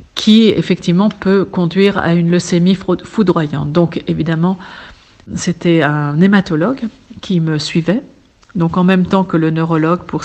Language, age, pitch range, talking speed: French, 50-69, 165-195 Hz, 140 wpm